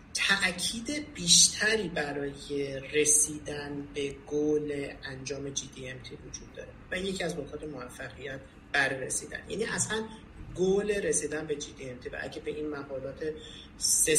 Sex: male